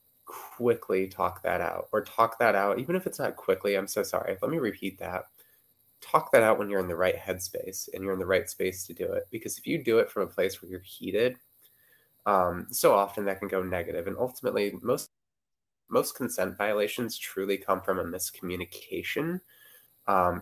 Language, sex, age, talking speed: English, male, 20-39, 200 wpm